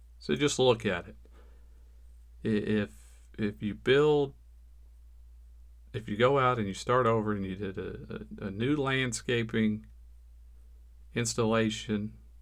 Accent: American